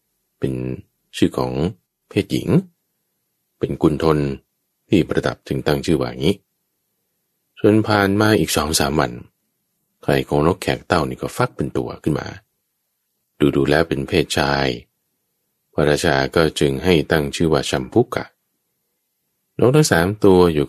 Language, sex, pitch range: English, male, 70-100 Hz